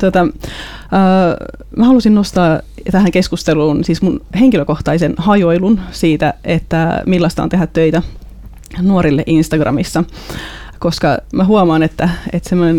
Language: Finnish